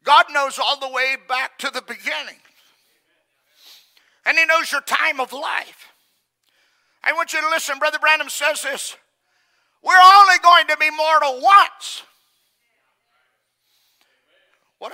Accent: American